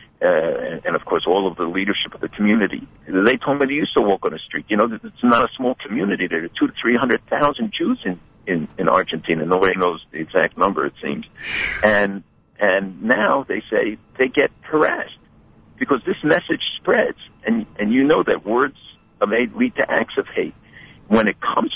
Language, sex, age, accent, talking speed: English, male, 60-79, American, 200 wpm